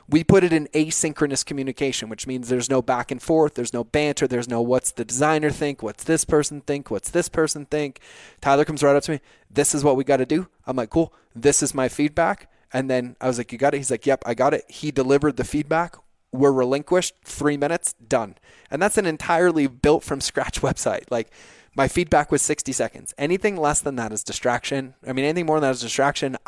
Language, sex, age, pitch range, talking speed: English, male, 20-39, 125-150 Hz, 230 wpm